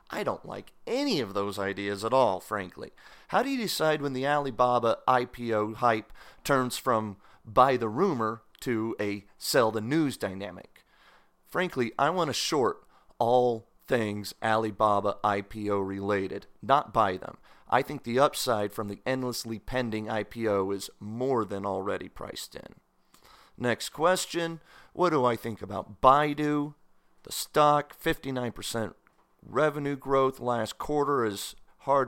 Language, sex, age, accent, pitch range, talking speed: English, male, 40-59, American, 105-135 Hz, 140 wpm